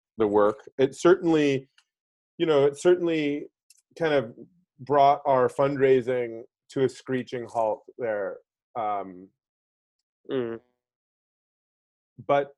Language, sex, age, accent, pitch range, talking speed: English, male, 30-49, American, 110-135 Hz, 95 wpm